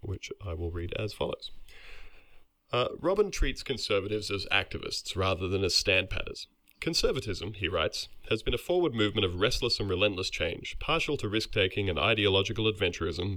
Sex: male